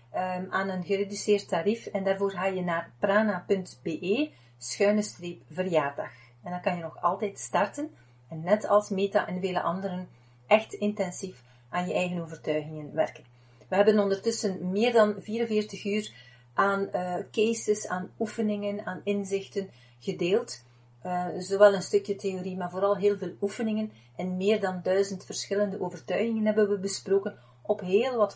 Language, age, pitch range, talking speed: Dutch, 40-59, 170-205 Hz, 150 wpm